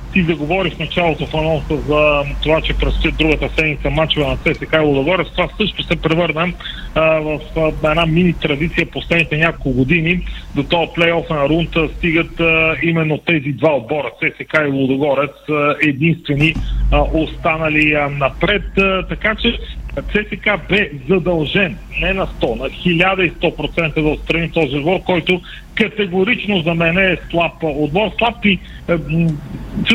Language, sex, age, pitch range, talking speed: Bulgarian, male, 40-59, 150-185 Hz, 150 wpm